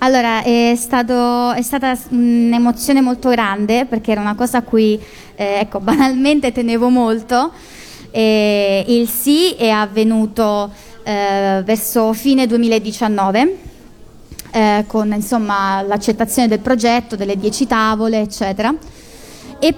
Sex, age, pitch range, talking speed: female, 20-39, 220-255 Hz, 120 wpm